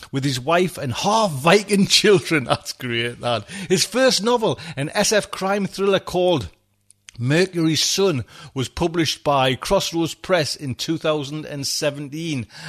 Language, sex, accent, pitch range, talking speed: English, male, British, 125-185 Hz, 130 wpm